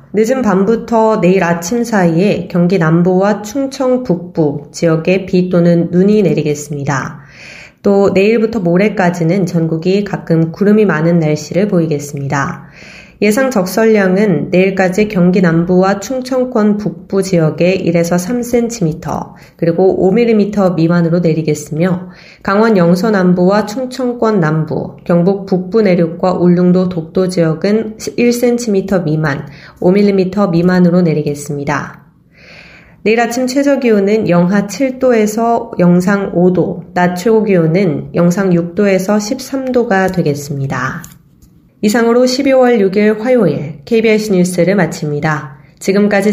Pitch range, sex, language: 170-210 Hz, female, Korean